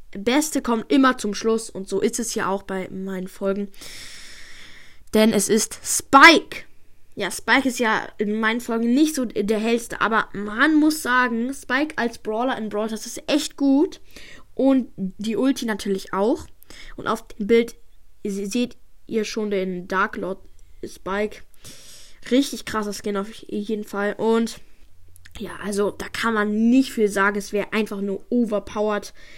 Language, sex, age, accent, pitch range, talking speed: German, female, 10-29, German, 200-240 Hz, 160 wpm